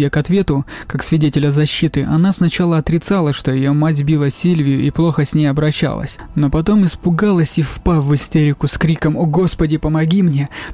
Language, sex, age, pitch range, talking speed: Russian, male, 20-39, 140-160 Hz, 175 wpm